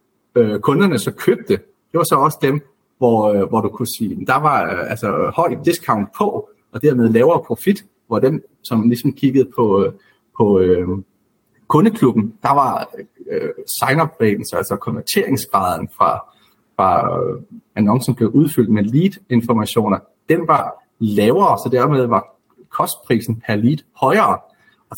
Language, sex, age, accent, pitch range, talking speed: Danish, male, 30-49, native, 115-155 Hz, 135 wpm